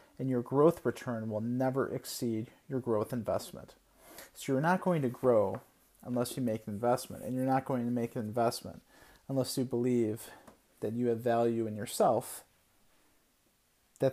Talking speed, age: 165 wpm, 40-59